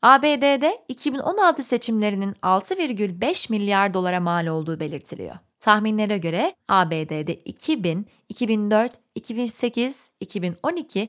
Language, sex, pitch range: Turkish, female, 180-270 Hz